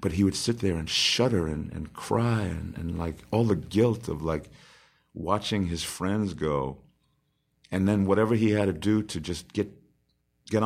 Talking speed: 185 wpm